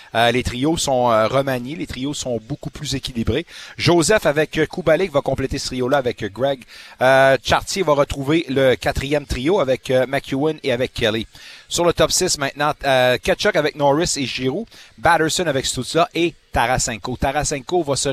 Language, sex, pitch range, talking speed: French, male, 130-170 Hz, 175 wpm